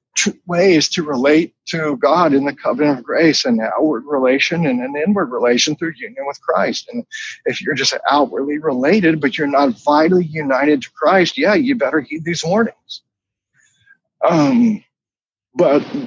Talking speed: 160 wpm